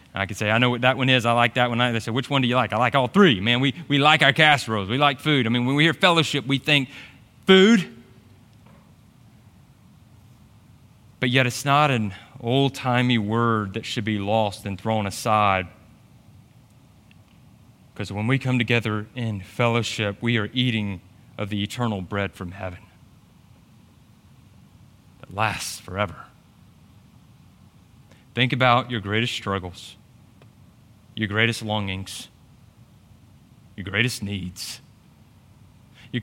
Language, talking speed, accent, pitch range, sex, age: English, 145 wpm, American, 110-135 Hz, male, 30-49